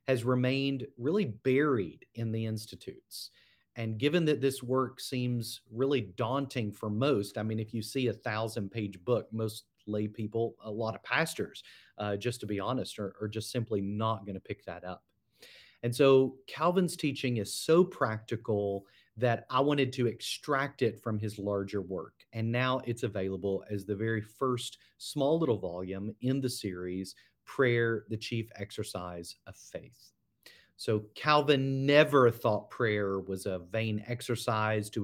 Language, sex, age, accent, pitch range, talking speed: English, male, 40-59, American, 100-125 Hz, 160 wpm